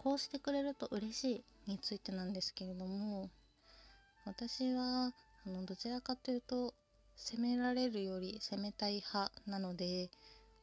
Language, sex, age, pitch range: Japanese, female, 20-39, 190-245 Hz